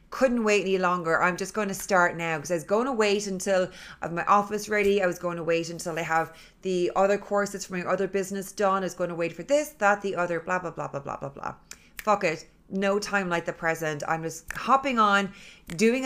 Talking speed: 250 wpm